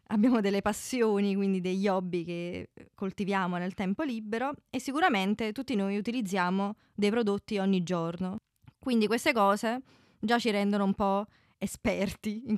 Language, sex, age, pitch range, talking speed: Italian, female, 20-39, 195-235 Hz, 145 wpm